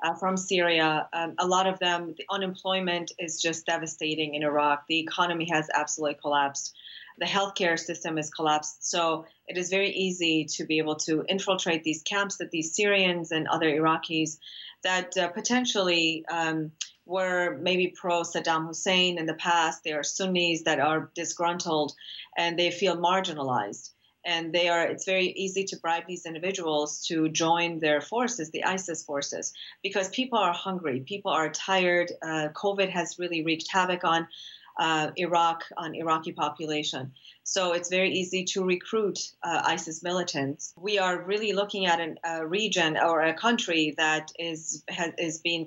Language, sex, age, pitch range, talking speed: English, female, 30-49, 155-185 Hz, 165 wpm